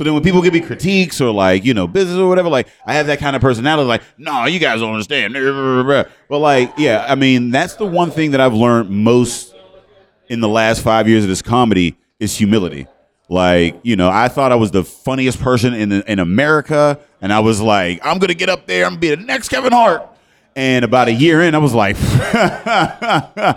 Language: English